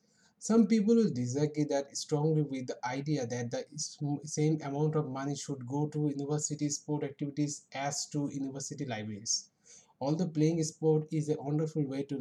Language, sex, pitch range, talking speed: English, male, 140-170 Hz, 160 wpm